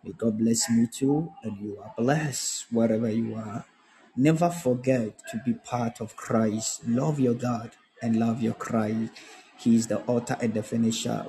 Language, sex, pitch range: Japanese, male, 115-130 Hz